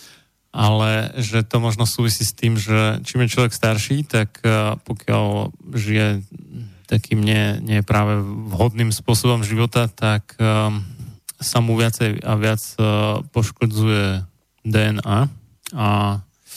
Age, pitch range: 30-49, 105-120 Hz